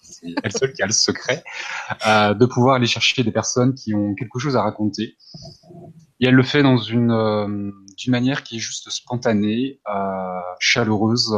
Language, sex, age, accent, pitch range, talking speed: French, male, 20-39, French, 100-120 Hz, 185 wpm